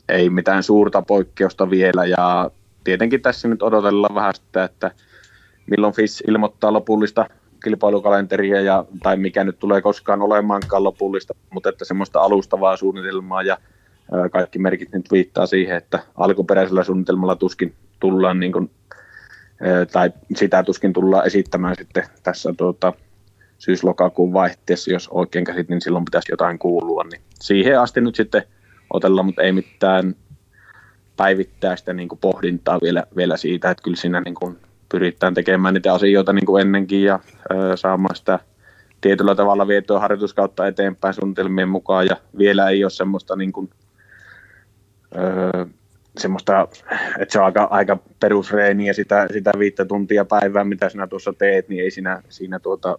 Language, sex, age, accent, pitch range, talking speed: Finnish, male, 30-49, native, 95-100 Hz, 145 wpm